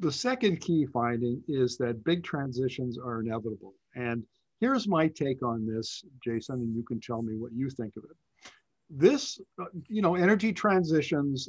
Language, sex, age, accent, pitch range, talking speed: English, male, 50-69, American, 120-155 Hz, 165 wpm